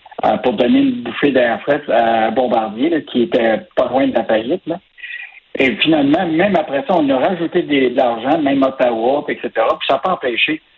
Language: French